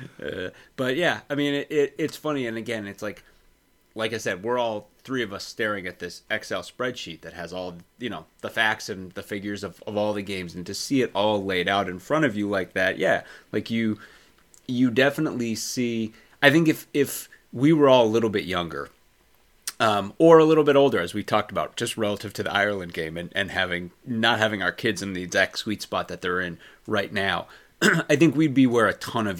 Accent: American